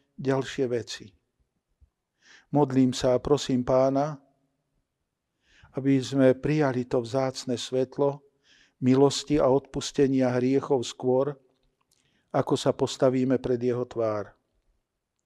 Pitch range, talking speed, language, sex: 130-150 Hz, 95 wpm, Slovak, male